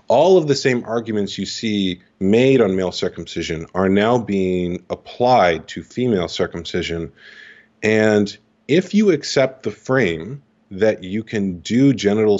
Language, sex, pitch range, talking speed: English, male, 90-110 Hz, 140 wpm